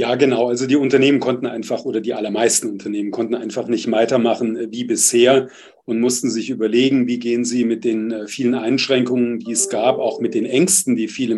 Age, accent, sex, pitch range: 40-59, German, male, 120-145 Hz